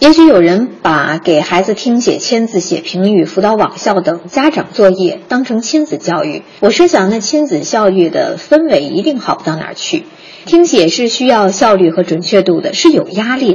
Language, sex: Chinese, female